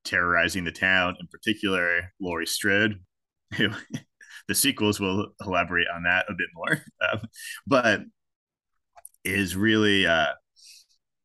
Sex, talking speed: male, 105 wpm